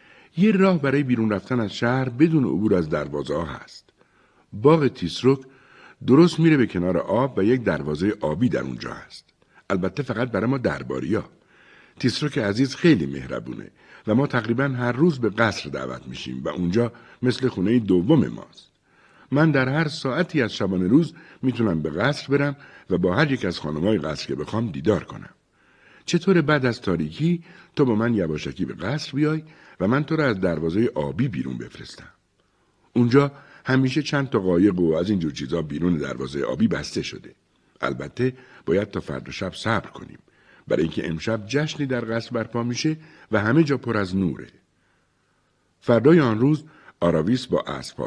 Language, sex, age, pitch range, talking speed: Persian, male, 60-79, 95-145 Hz, 165 wpm